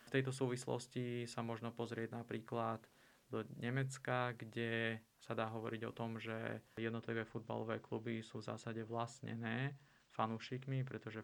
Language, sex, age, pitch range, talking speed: Slovak, male, 20-39, 110-120 Hz, 135 wpm